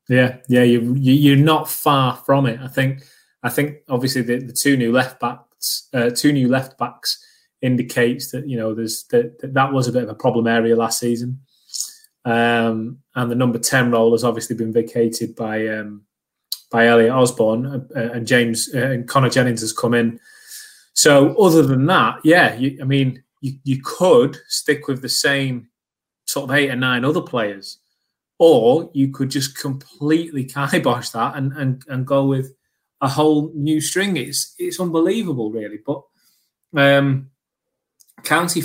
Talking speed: 170 wpm